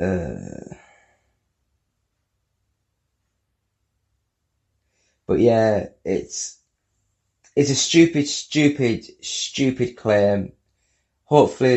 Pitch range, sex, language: 100-125 Hz, male, English